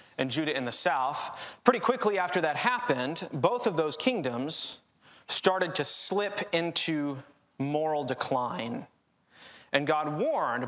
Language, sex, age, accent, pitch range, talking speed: English, male, 20-39, American, 140-175 Hz, 130 wpm